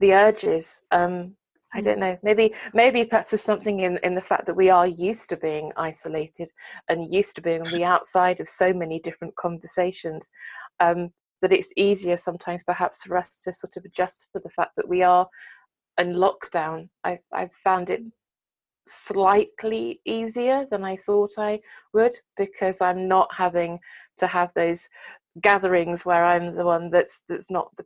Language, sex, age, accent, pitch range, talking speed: English, female, 20-39, British, 170-195 Hz, 175 wpm